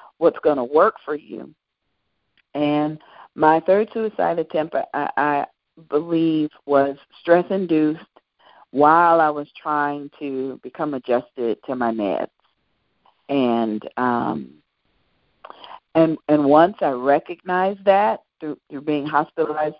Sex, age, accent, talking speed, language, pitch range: female, 40-59, American, 115 wpm, English, 130-175 Hz